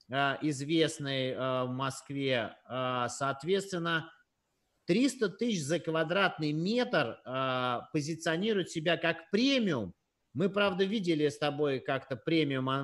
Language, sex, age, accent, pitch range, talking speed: Russian, male, 30-49, native, 140-175 Hz, 95 wpm